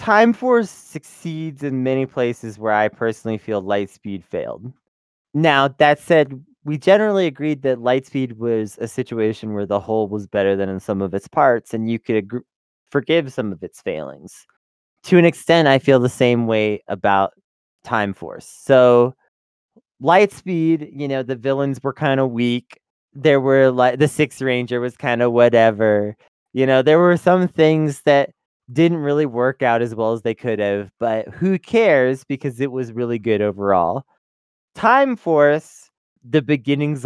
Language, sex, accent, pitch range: English, male, American, 115-150 Hz